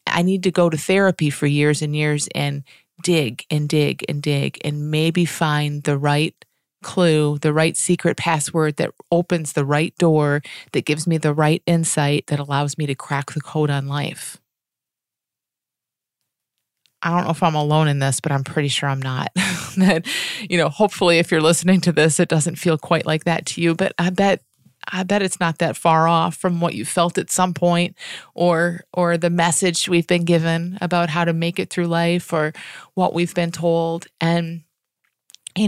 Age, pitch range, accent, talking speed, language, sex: 30-49, 155-180 Hz, American, 195 wpm, English, female